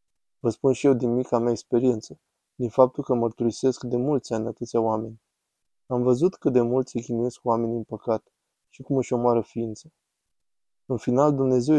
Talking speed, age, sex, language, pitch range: 180 wpm, 20-39, male, Romanian, 115-130 Hz